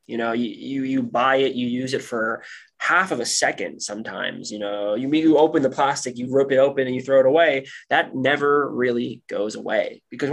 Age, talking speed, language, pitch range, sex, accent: 20-39, 220 wpm, English, 120-150 Hz, male, American